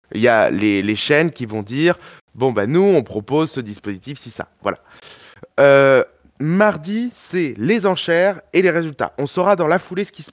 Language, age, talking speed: French, 20-39, 210 wpm